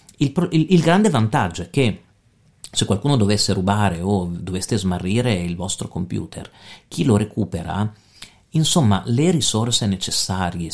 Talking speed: 135 wpm